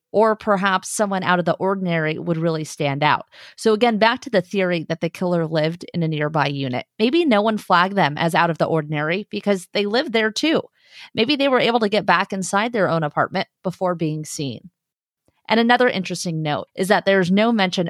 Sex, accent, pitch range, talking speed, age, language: female, American, 165-210 Hz, 210 wpm, 30-49, English